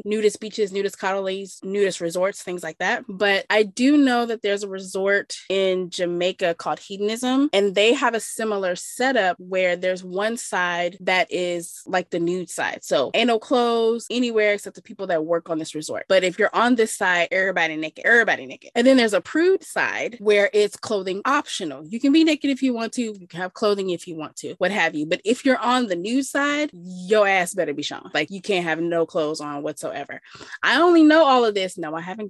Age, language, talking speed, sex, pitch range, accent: 20-39, English, 220 wpm, female, 175-225 Hz, American